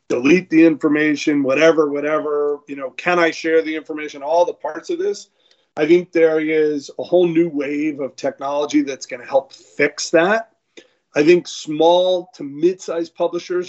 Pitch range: 145-180 Hz